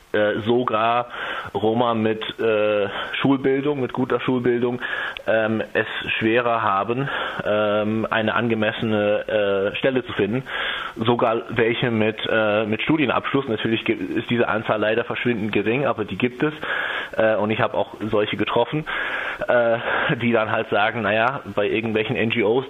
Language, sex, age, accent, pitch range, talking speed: German, male, 20-39, German, 110-125 Hz, 135 wpm